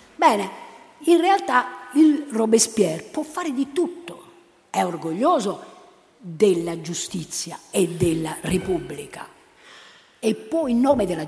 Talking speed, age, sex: 110 wpm, 50-69, female